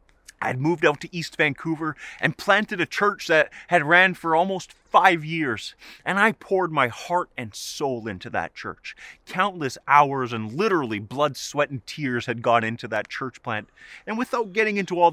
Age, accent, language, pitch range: 30-49, American, English, 120-185 Hz